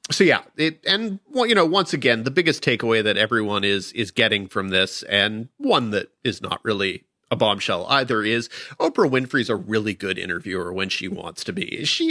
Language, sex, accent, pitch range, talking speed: English, male, American, 110-140 Hz, 205 wpm